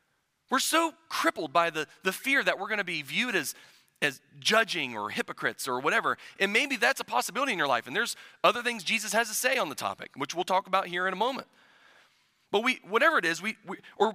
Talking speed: 235 wpm